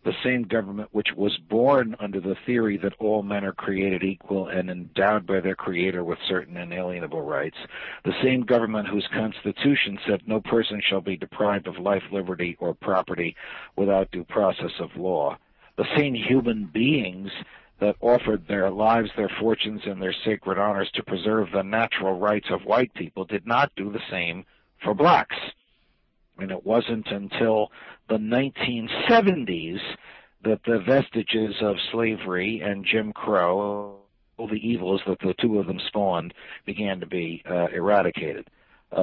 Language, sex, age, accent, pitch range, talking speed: English, male, 60-79, American, 95-115 Hz, 160 wpm